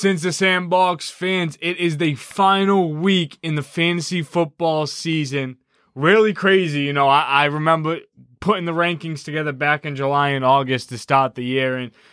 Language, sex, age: English, male, 20-39